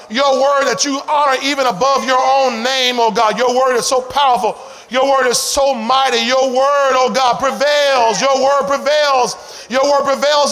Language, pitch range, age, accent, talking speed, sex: English, 265-370 Hz, 40-59, American, 190 wpm, male